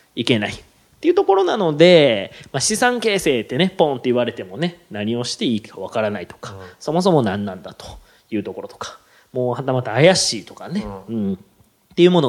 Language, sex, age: Japanese, male, 30-49